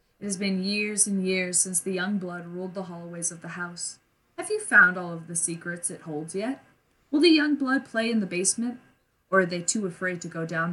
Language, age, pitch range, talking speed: English, 20-39, 165-195 Hz, 235 wpm